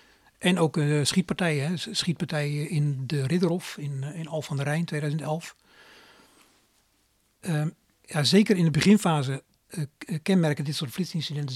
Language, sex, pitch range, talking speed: Dutch, male, 140-160 Hz, 135 wpm